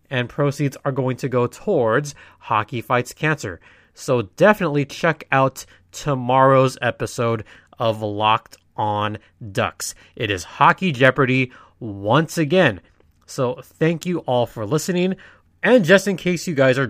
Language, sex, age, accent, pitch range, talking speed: English, male, 20-39, American, 120-160 Hz, 140 wpm